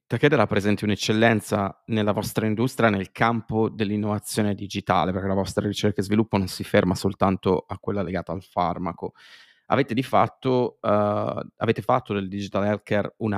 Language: Italian